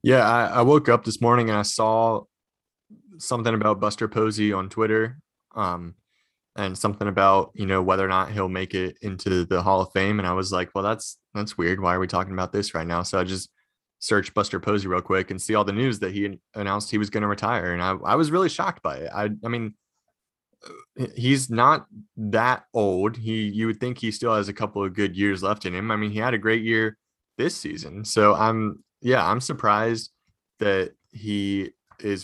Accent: American